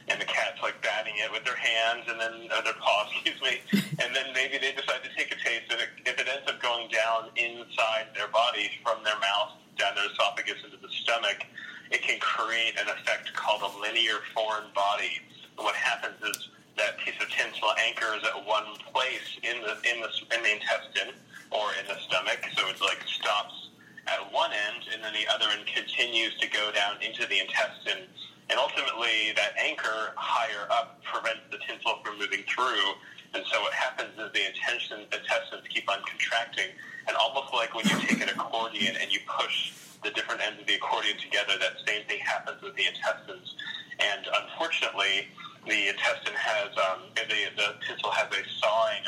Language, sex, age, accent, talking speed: English, male, 30-49, American, 190 wpm